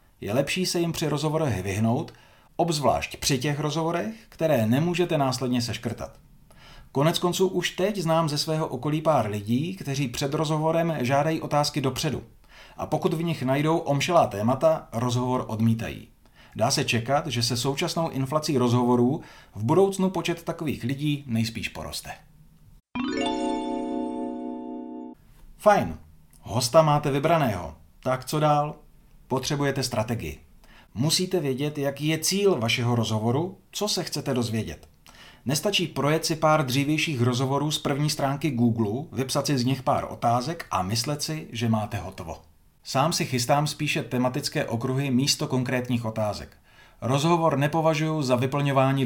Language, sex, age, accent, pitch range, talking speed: Czech, male, 40-59, native, 115-160 Hz, 135 wpm